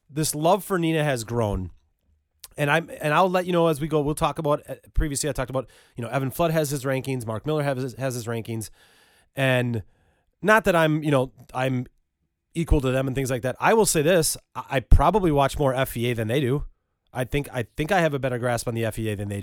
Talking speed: 235 wpm